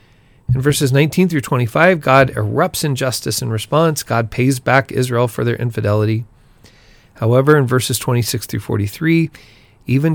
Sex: male